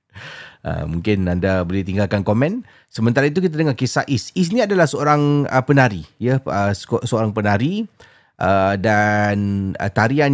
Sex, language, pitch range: male, Malay, 100-140 Hz